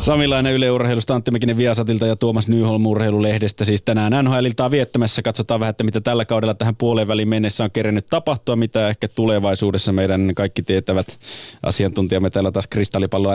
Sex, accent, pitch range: male, native, 95-120 Hz